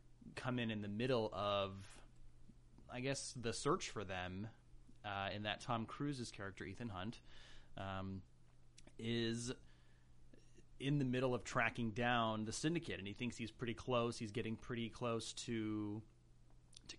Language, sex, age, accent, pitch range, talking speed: English, male, 30-49, American, 100-120 Hz, 150 wpm